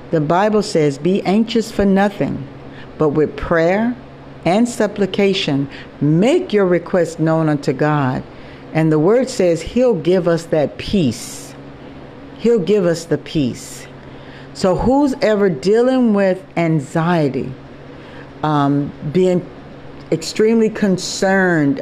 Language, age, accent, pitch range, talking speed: English, 60-79, American, 145-195 Hz, 115 wpm